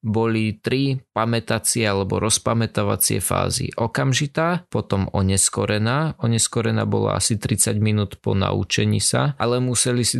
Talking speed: 120 wpm